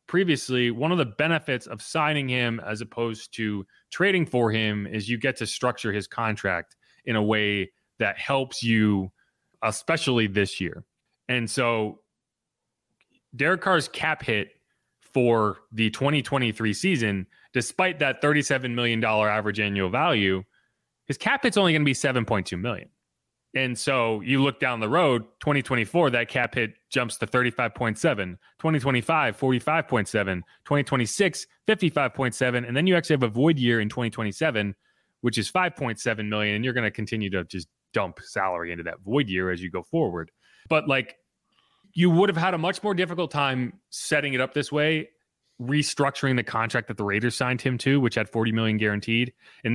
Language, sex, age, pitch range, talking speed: English, male, 30-49, 110-145 Hz, 165 wpm